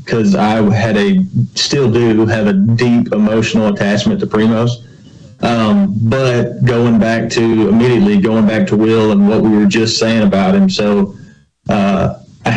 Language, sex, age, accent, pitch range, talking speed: English, male, 30-49, American, 105-135 Hz, 160 wpm